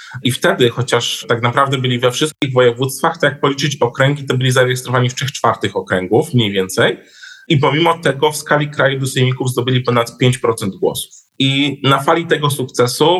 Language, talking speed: Polish, 175 wpm